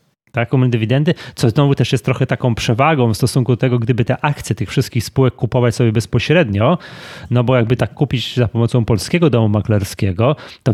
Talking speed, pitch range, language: 180 wpm, 110-135 Hz, Polish